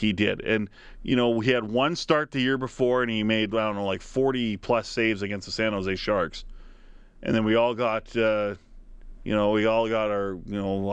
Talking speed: 225 wpm